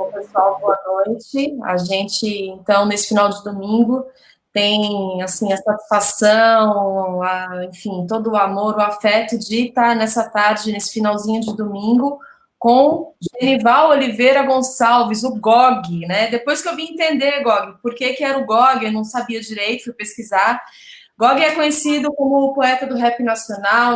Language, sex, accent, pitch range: Portuguese, female, Brazilian, 215-265 Hz